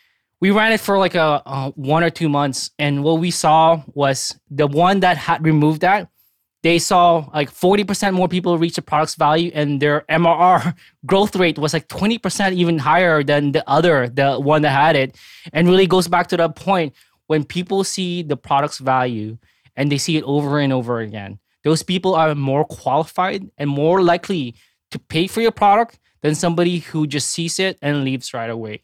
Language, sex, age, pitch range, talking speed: English, male, 20-39, 145-185 Hz, 190 wpm